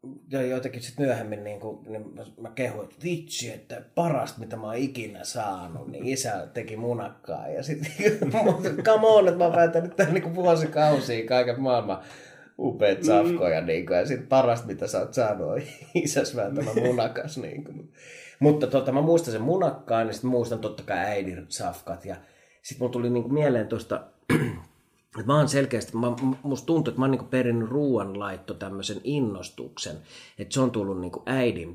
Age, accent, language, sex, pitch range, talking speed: 30-49, native, Finnish, male, 95-135 Hz, 170 wpm